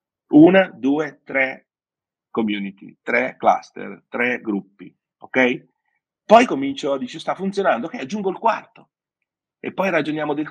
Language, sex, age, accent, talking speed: Italian, male, 40-59, native, 130 wpm